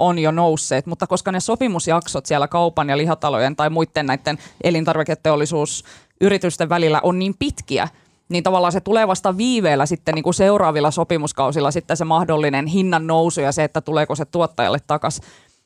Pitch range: 155-205 Hz